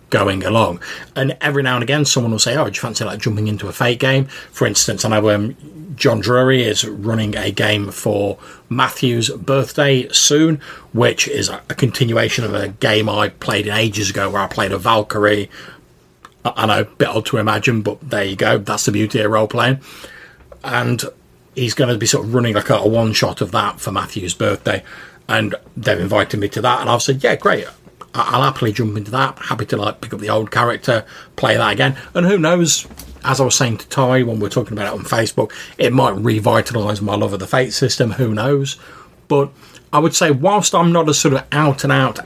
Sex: male